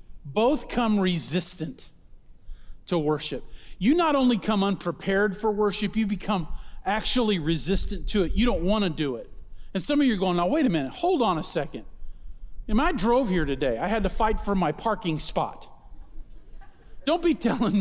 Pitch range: 180-240 Hz